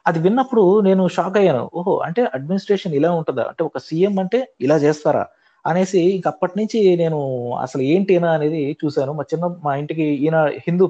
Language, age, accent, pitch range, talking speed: Telugu, 30-49, native, 140-190 Hz, 165 wpm